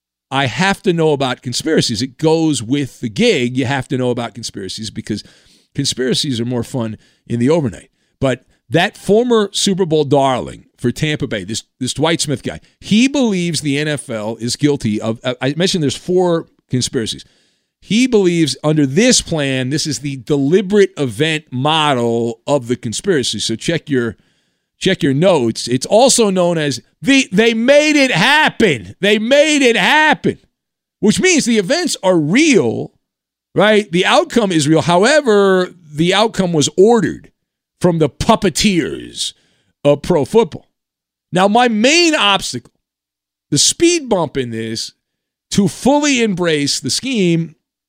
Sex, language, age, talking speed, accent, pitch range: male, English, 50-69, 150 wpm, American, 125-200 Hz